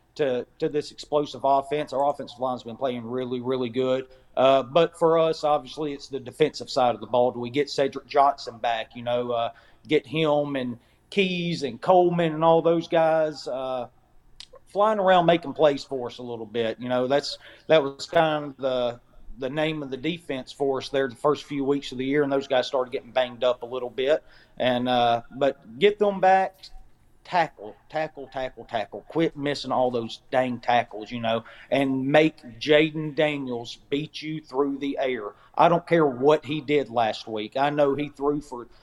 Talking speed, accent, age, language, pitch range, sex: 200 wpm, American, 40-59, English, 125-155 Hz, male